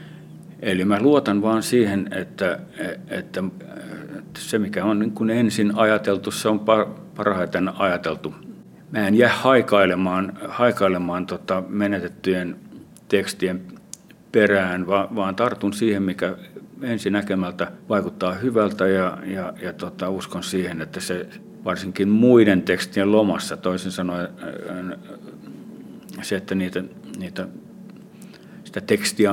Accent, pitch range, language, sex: native, 95-115 Hz, Finnish, male